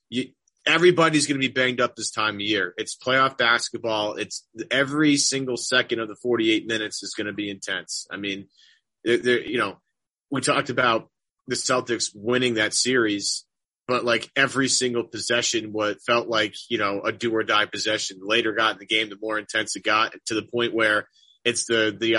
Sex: male